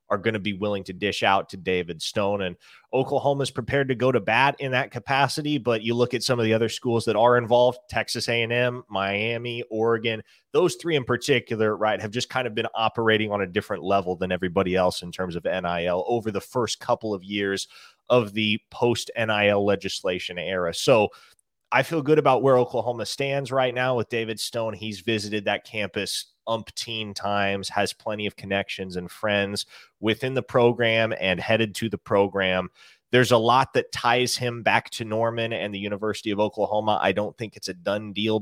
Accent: American